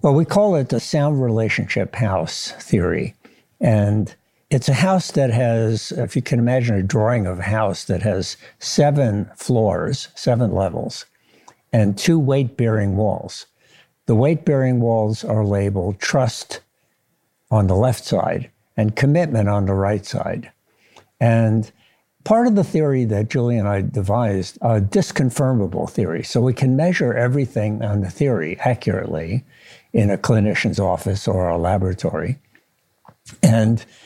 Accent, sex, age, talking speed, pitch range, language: American, male, 60-79, 145 wpm, 105-135 Hz, English